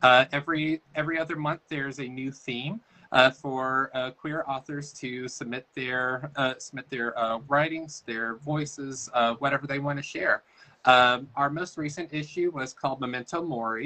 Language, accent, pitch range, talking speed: English, American, 125-150 Hz, 160 wpm